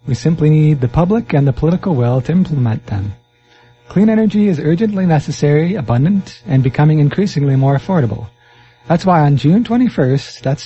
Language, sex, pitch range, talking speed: English, male, 125-170 Hz, 165 wpm